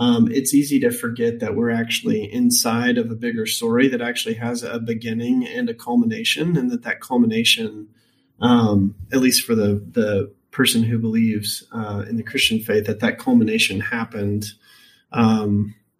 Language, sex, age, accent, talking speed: English, male, 30-49, American, 165 wpm